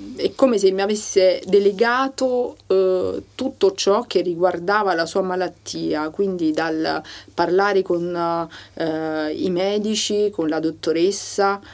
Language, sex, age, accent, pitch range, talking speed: Italian, female, 40-59, native, 160-195 Hz, 125 wpm